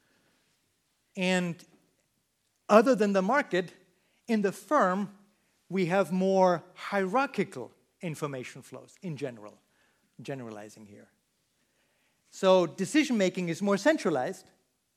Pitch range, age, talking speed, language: 170-215 Hz, 50-69, 90 wpm, Dutch